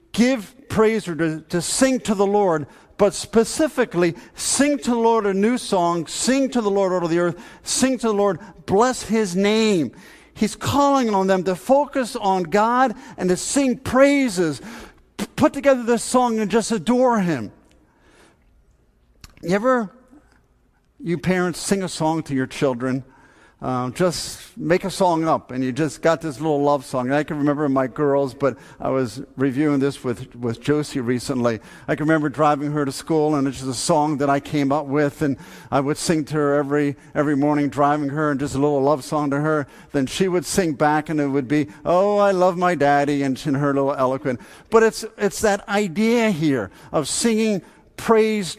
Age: 50-69